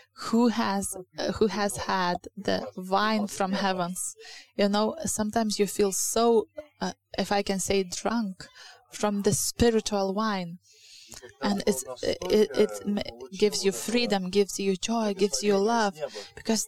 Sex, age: female, 20-39